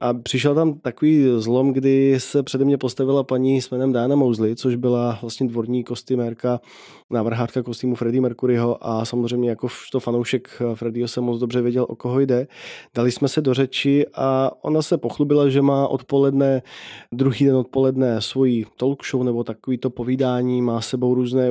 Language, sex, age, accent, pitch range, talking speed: Czech, male, 20-39, native, 125-140 Hz, 175 wpm